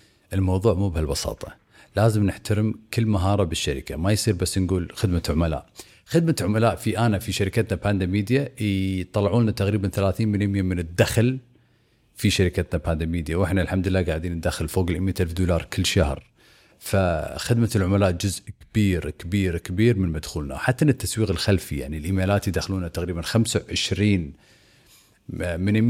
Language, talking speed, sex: Arabic, 140 wpm, male